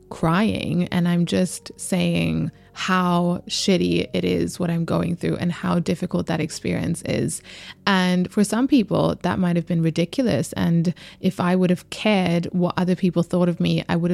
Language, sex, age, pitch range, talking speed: English, female, 20-39, 170-190 Hz, 180 wpm